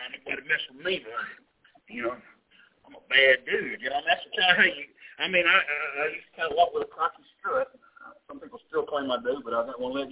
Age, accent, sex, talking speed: 60-79, American, male, 250 wpm